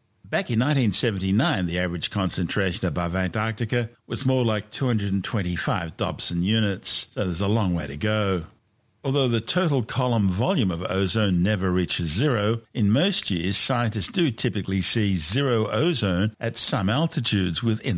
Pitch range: 95-115 Hz